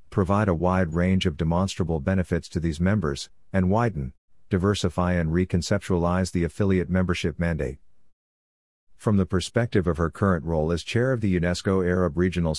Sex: male